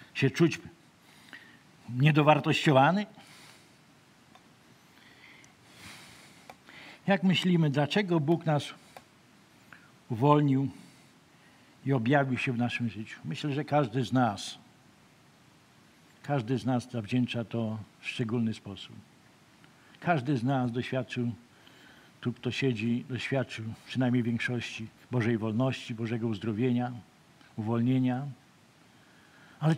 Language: Polish